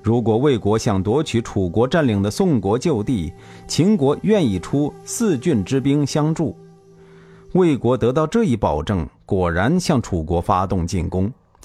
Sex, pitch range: male, 85-140 Hz